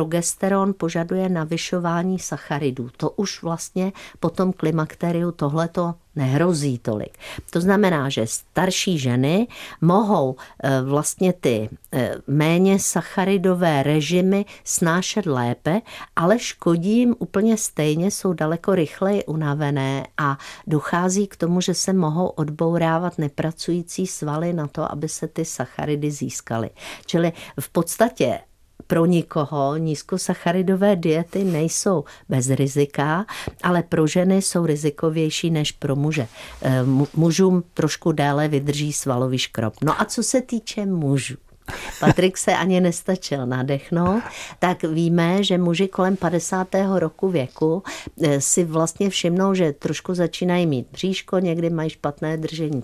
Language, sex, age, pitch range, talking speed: Czech, female, 50-69, 150-185 Hz, 120 wpm